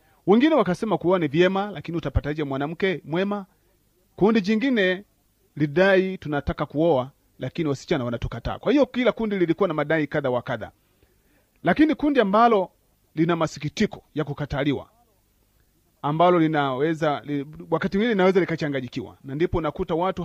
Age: 40-59